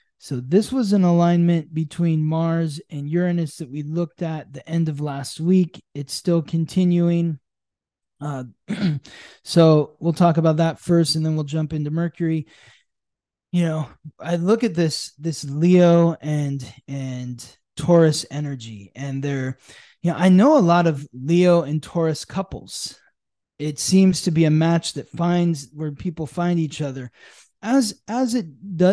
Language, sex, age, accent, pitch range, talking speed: English, male, 20-39, American, 145-175 Hz, 160 wpm